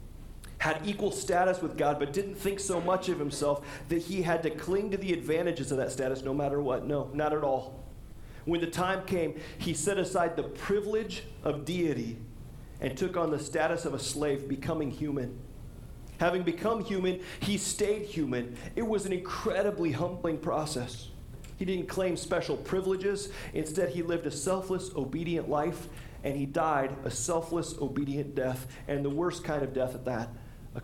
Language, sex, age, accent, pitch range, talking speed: English, male, 40-59, American, 145-190 Hz, 175 wpm